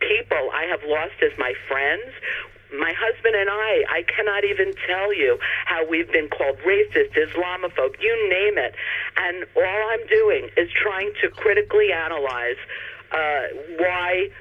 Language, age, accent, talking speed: English, 50-69, American, 150 wpm